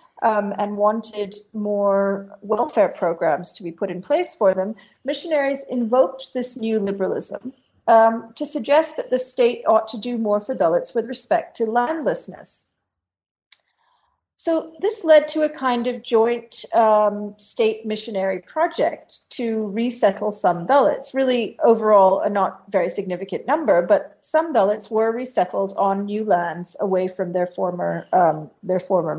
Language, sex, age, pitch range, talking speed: English, female, 40-59, 200-250 Hz, 150 wpm